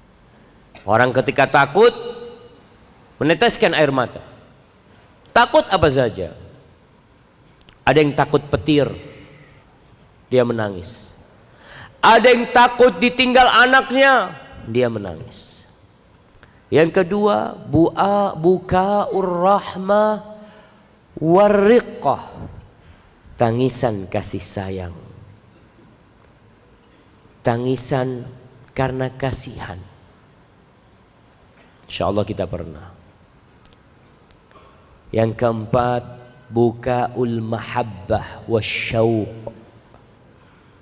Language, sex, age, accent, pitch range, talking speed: English, male, 50-69, Indonesian, 110-140 Hz, 60 wpm